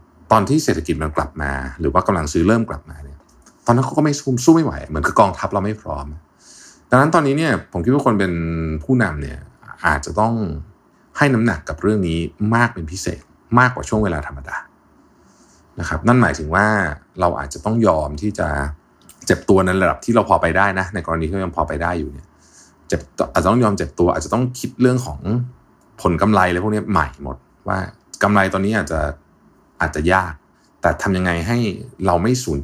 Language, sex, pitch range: Thai, male, 75-105 Hz